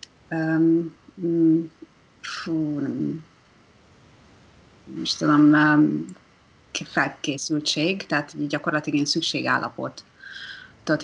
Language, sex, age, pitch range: Hungarian, female, 30-49, 160-205 Hz